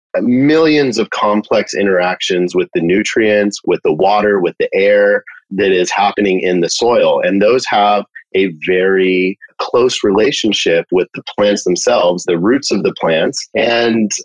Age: 30-49